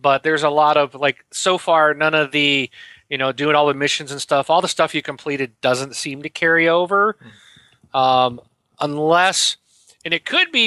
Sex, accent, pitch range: male, American, 130-155 Hz